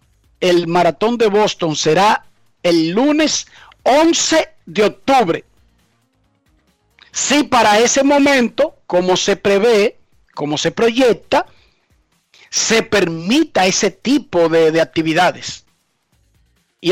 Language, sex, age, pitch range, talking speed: Spanish, male, 40-59, 175-230 Hz, 100 wpm